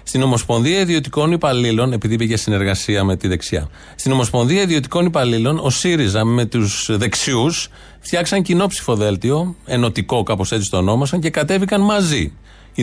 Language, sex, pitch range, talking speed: Greek, male, 120-180 Hz, 140 wpm